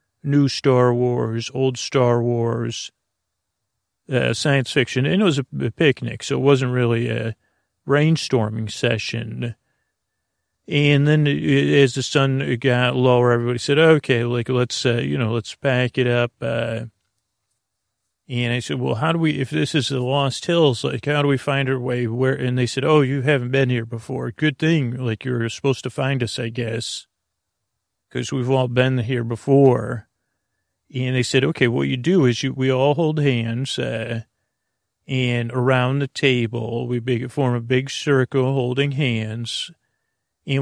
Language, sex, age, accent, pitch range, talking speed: English, male, 40-59, American, 120-135 Hz, 170 wpm